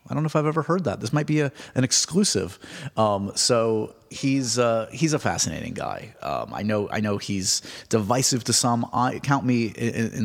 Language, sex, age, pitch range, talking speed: English, male, 30-49, 100-120 Hz, 210 wpm